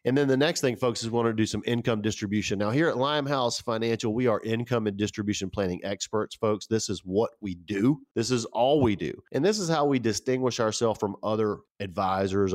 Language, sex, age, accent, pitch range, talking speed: English, male, 40-59, American, 100-120 Hz, 225 wpm